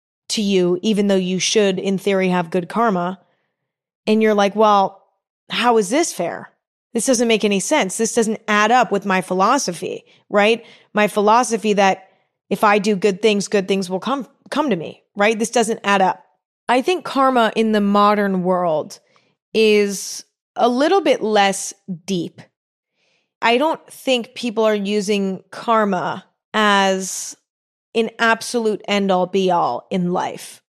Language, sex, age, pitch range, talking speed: English, female, 20-39, 195-240 Hz, 160 wpm